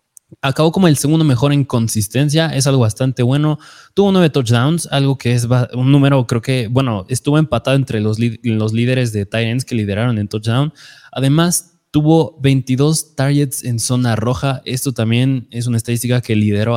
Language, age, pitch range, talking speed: Spanish, 20-39, 120-145 Hz, 180 wpm